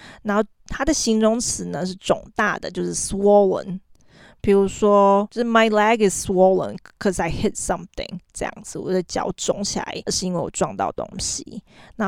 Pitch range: 185-220 Hz